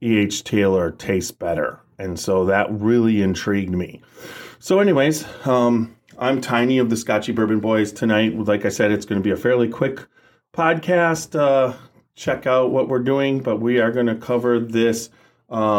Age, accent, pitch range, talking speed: 30-49, American, 105-130 Hz, 175 wpm